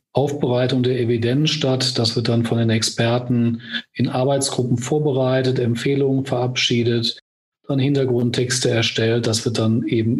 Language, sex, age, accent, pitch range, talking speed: German, male, 40-59, German, 120-140 Hz, 130 wpm